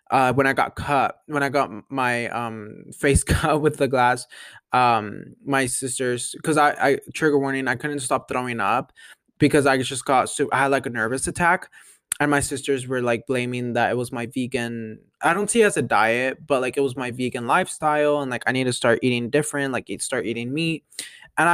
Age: 20-39